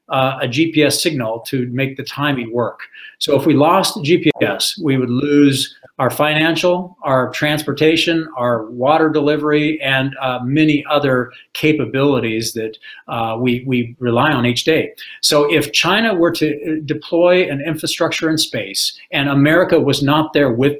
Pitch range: 130-160 Hz